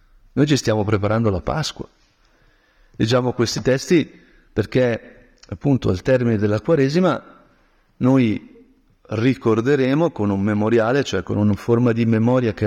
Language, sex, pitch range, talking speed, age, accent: Italian, male, 105-135 Hz, 130 wpm, 50-69, native